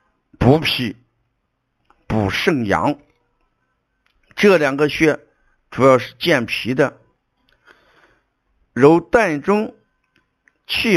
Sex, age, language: male, 60-79, Chinese